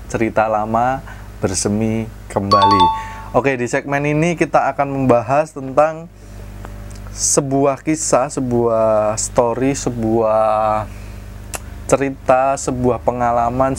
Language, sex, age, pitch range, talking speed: Indonesian, male, 20-39, 105-135 Hz, 85 wpm